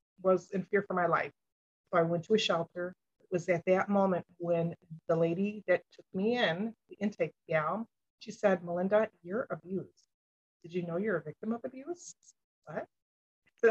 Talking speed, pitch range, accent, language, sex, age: 180 wpm, 170-200 Hz, American, English, female, 30-49